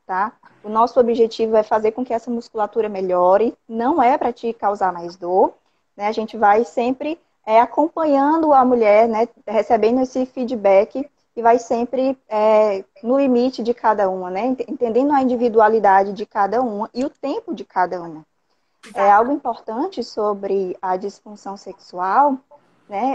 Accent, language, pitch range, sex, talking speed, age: Brazilian, Portuguese, 210-270 Hz, female, 160 wpm, 10-29